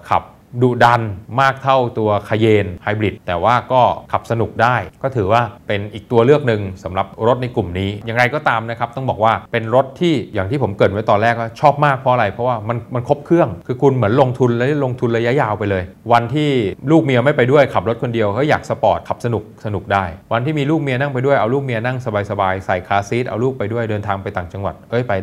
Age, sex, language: 20-39, male, Thai